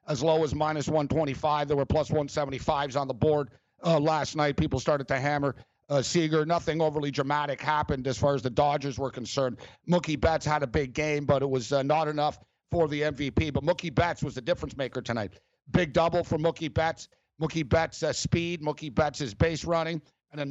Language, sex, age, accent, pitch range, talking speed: English, male, 50-69, American, 140-165 Hz, 205 wpm